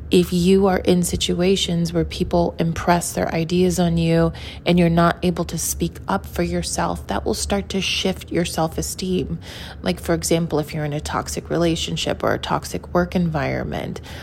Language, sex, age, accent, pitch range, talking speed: English, female, 20-39, American, 145-175 Hz, 180 wpm